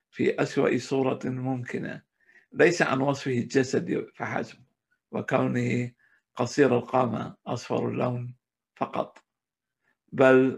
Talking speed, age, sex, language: 90 wpm, 60-79, male, Arabic